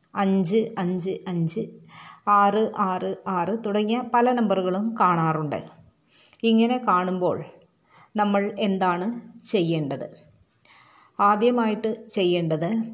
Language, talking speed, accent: Malayalam, 80 wpm, native